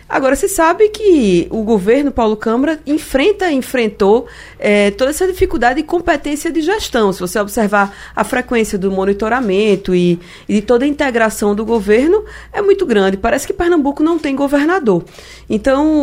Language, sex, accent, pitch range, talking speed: Portuguese, female, Brazilian, 195-270 Hz, 160 wpm